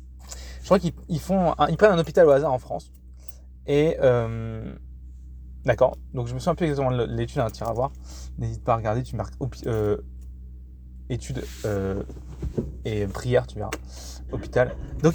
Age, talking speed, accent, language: 20-39, 180 wpm, French, French